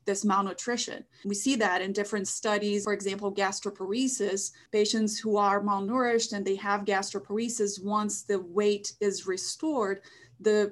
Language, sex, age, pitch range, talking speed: English, female, 30-49, 200-225 Hz, 140 wpm